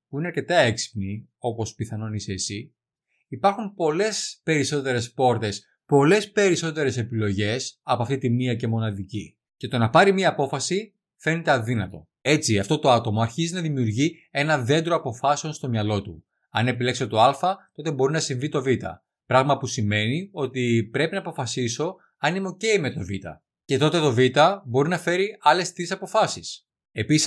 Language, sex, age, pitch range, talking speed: Greek, male, 20-39, 115-160 Hz, 165 wpm